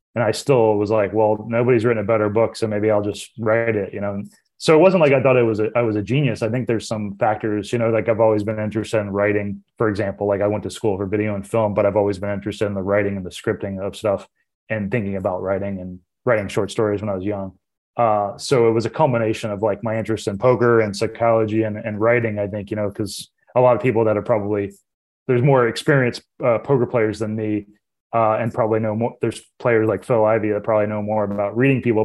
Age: 20-39